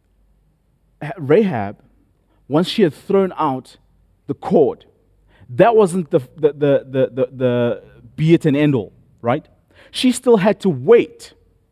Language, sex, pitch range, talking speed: English, male, 95-155 Hz, 140 wpm